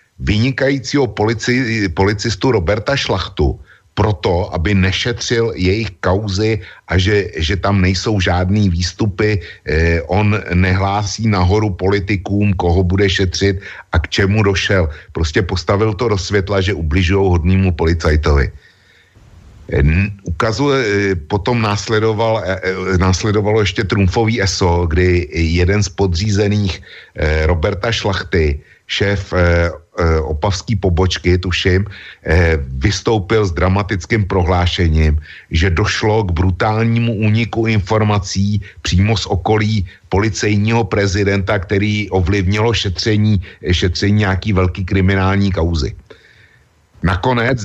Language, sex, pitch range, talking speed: Slovak, male, 90-105 Hz, 105 wpm